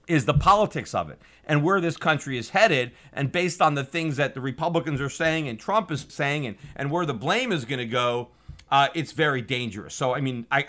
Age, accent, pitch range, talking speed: 40-59, American, 125-160 Hz, 230 wpm